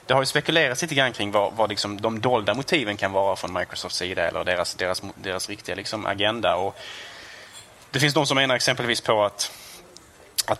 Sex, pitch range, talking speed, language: male, 100-120 Hz, 200 wpm, Swedish